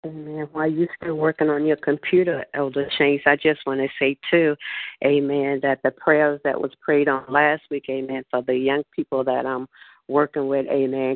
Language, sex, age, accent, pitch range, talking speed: English, female, 40-59, American, 135-155 Hz, 195 wpm